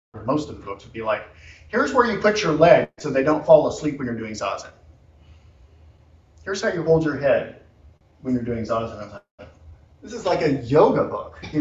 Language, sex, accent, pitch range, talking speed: English, male, American, 85-135 Hz, 210 wpm